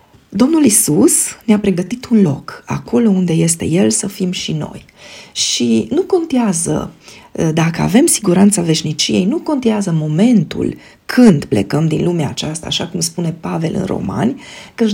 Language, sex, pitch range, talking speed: Romanian, female, 165-215 Hz, 145 wpm